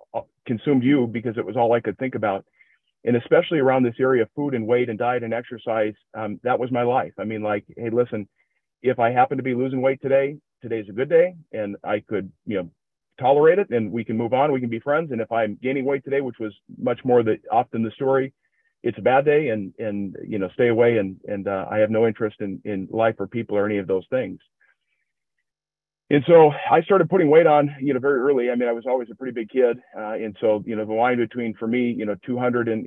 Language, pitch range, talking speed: English, 110-130 Hz, 250 wpm